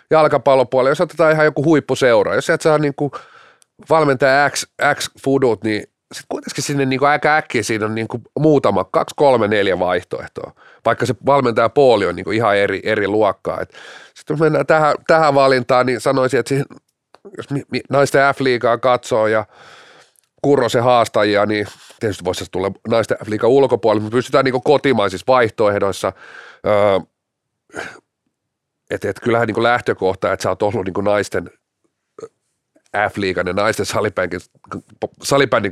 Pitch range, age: 100-140 Hz, 30-49